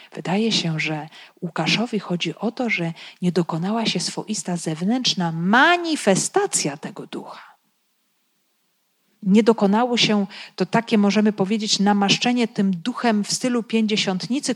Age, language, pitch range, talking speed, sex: 40-59, Polish, 180-250 Hz, 120 wpm, female